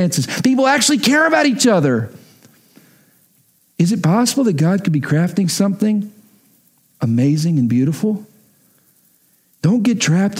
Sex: male